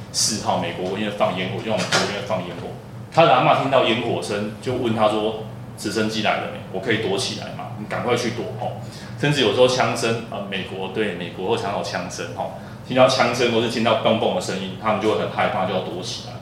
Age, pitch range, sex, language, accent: 20-39, 110-120 Hz, male, Chinese, native